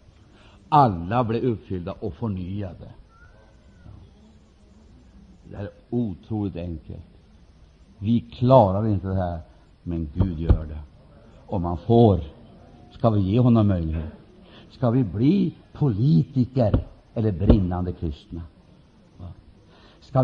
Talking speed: 100 wpm